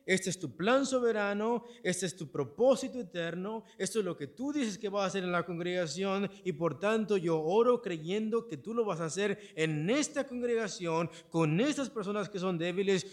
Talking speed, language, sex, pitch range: 200 wpm, Spanish, male, 135-200 Hz